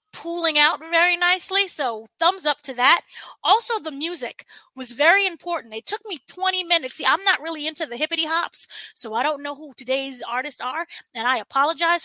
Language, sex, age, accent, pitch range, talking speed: English, female, 20-39, American, 250-325 Hz, 195 wpm